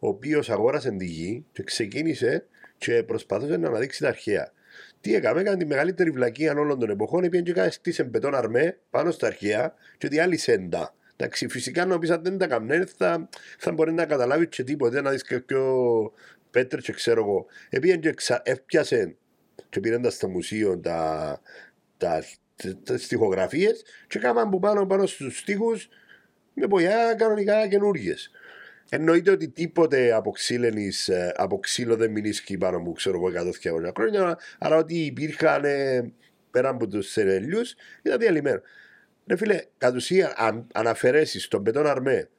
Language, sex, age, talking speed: Greek, male, 50-69, 165 wpm